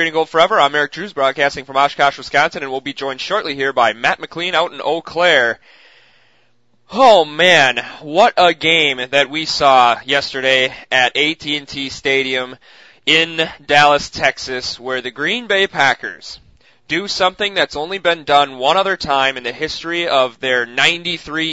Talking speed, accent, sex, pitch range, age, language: 155 wpm, American, male, 135-165 Hz, 20-39, English